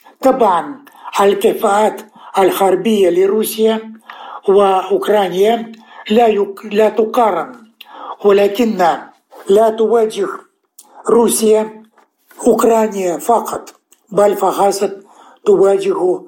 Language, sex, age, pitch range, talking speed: Arabic, male, 60-79, 195-225 Hz, 65 wpm